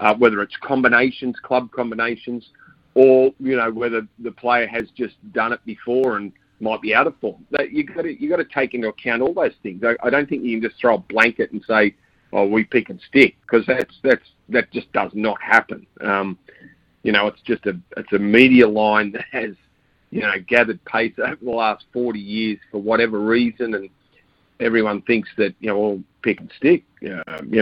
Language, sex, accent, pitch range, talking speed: English, male, Australian, 105-120 Hz, 205 wpm